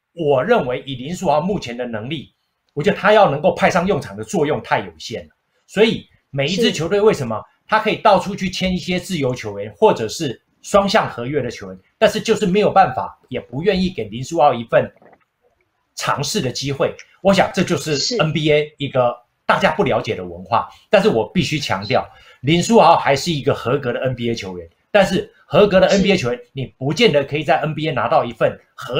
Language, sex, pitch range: Chinese, male, 125-190 Hz